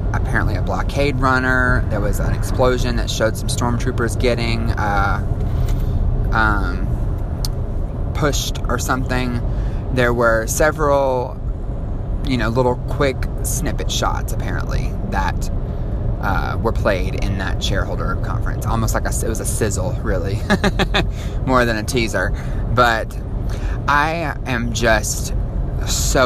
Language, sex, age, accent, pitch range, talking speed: English, male, 20-39, American, 100-120 Hz, 120 wpm